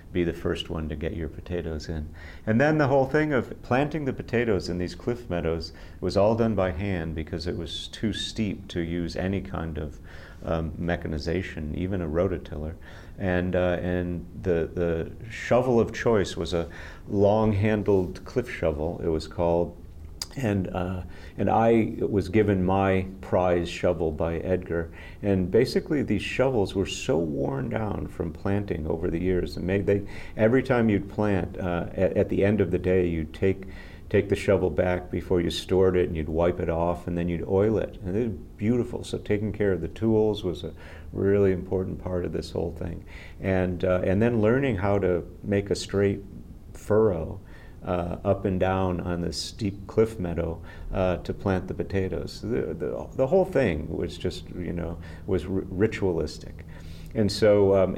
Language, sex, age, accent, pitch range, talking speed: English, male, 40-59, American, 85-100 Hz, 180 wpm